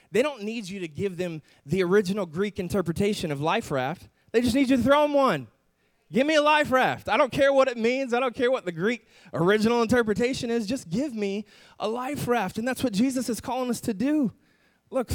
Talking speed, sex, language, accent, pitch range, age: 230 wpm, male, English, American, 160-235 Hz, 20-39